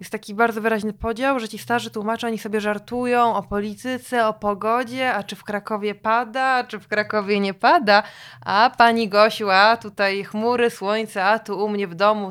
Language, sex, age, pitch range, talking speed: Polish, female, 20-39, 185-225 Hz, 195 wpm